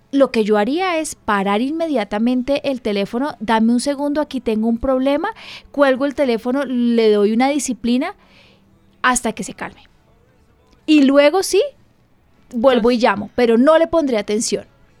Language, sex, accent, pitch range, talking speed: Spanish, female, Colombian, 230-290 Hz, 150 wpm